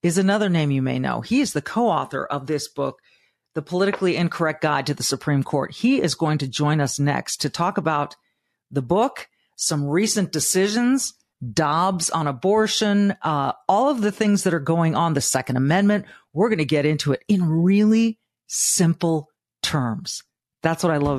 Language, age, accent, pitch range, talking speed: English, 40-59, American, 145-190 Hz, 185 wpm